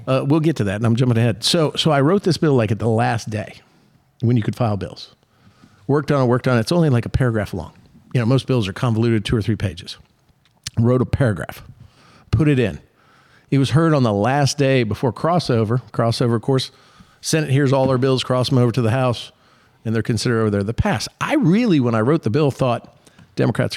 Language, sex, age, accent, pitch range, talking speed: English, male, 50-69, American, 115-140 Hz, 230 wpm